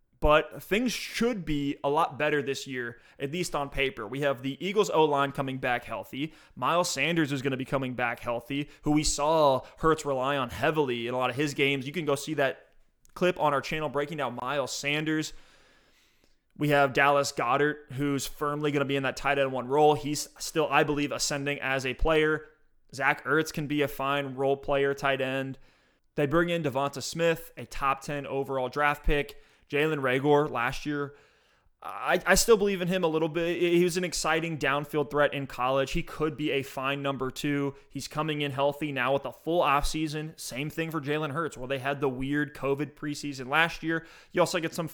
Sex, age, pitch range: male, 20-39, 135-155 Hz